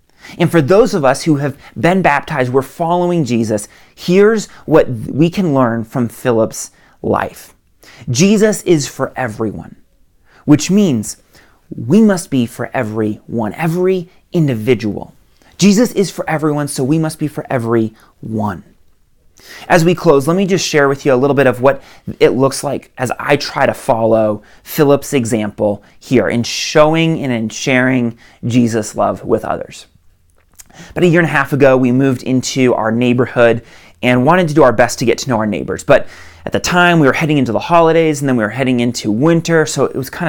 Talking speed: 180 wpm